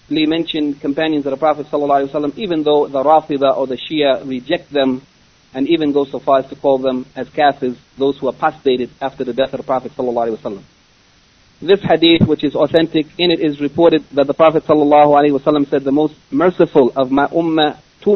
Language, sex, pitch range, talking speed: English, male, 135-160 Hz, 190 wpm